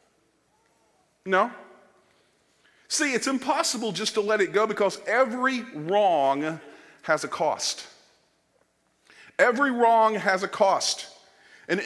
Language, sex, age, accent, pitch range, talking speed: English, male, 50-69, American, 185-265 Hz, 105 wpm